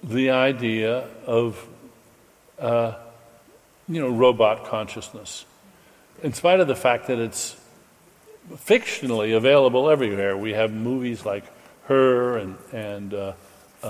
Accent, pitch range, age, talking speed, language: American, 115-150 Hz, 60-79, 110 wpm, English